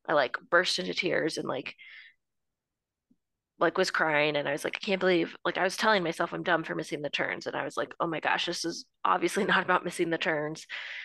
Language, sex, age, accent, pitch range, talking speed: English, female, 20-39, American, 170-220 Hz, 235 wpm